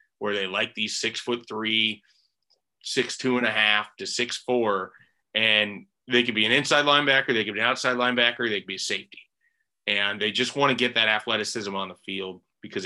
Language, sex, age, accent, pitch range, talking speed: English, male, 30-49, American, 105-125 Hz, 175 wpm